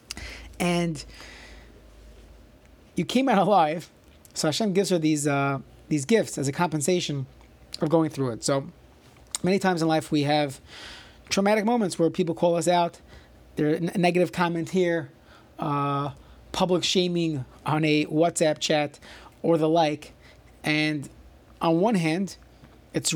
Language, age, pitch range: English, 30-49, 155-190 Hz